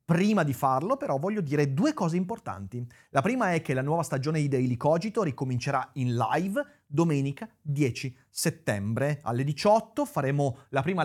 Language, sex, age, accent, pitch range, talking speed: Italian, male, 30-49, native, 125-170 Hz, 165 wpm